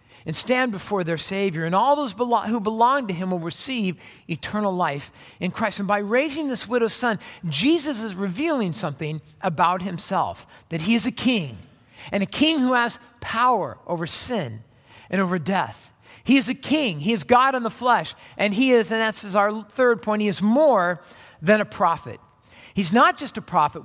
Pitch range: 185-250 Hz